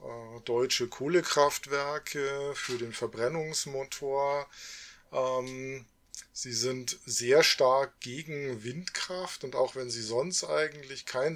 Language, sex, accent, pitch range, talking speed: German, male, German, 125-165 Hz, 95 wpm